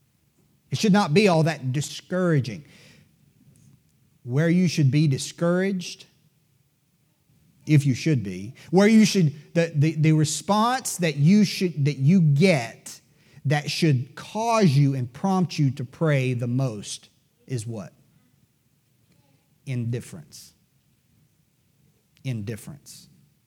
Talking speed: 115 wpm